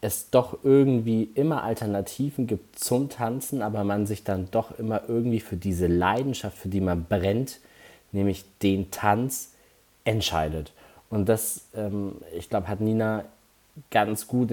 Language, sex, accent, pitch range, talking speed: German, male, German, 95-125 Hz, 145 wpm